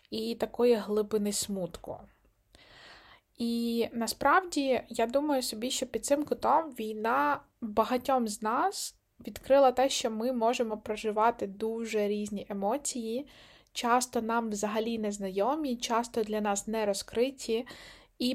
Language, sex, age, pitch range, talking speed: Ukrainian, female, 20-39, 205-245 Hz, 120 wpm